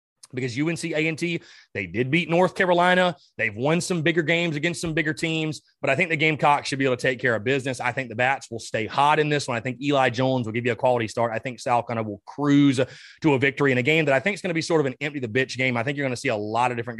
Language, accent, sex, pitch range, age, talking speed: English, American, male, 125-165 Hz, 30-49, 295 wpm